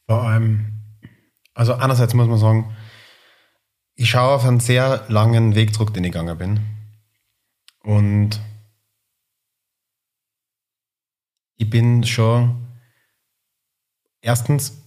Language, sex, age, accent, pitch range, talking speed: German, male, 30-49, German, 105-115 Hz, 95 wpm